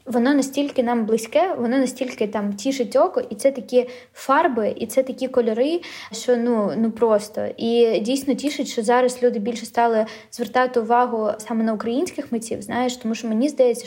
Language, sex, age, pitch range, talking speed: Ukrainian, female, 20-39, 220-250 Hz, 175 wpm